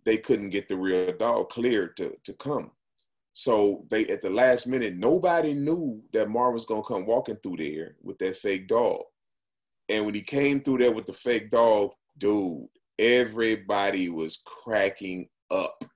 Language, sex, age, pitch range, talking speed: English, male, 30-49, 115-160 Hz, 175 wpm